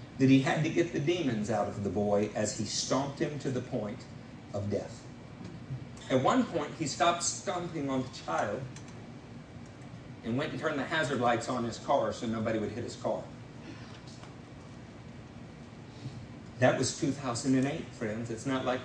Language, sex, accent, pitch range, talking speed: English, male, American, 120-175 Hz, 165 wpm